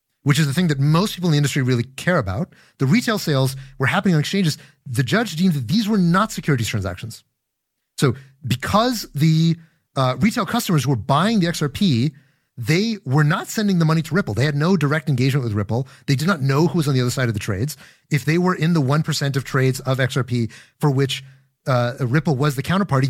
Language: English